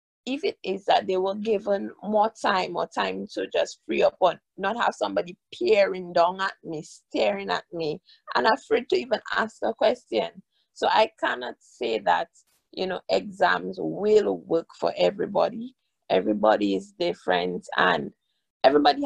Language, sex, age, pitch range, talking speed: English, female, 20-39, 170-225 Hz, 155 wpm